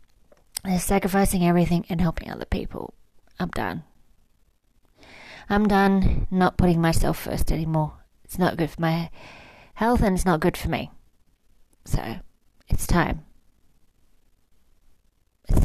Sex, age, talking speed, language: female, 30-49, 120 wpm, English